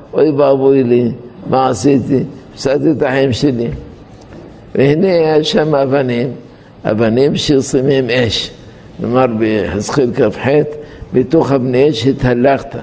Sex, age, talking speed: male, 60-79, 110 wpm